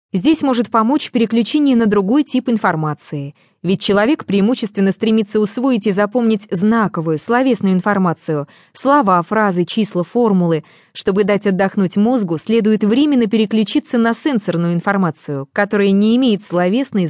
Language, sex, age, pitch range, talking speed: English, female, 20-39, 185-235 Hz, 125 wpm